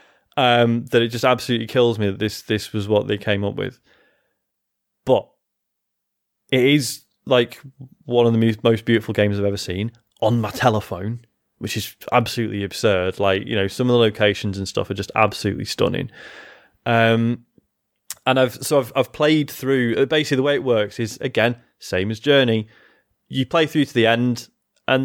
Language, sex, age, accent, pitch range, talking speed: English, male, 20-39, British, 110-135 Hz, 175 wpm